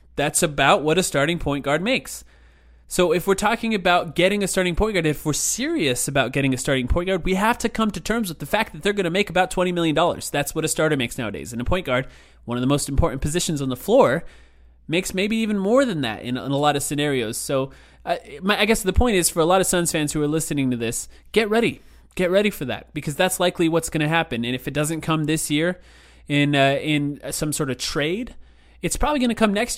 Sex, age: male, 20-39